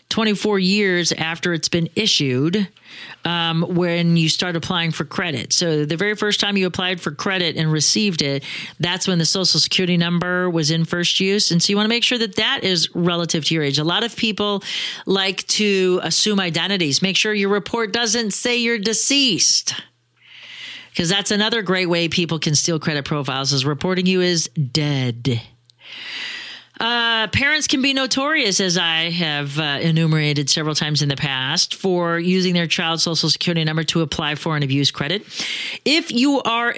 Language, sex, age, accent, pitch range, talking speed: English, female, 40-59, American, 165-220 Hz, 180 wpm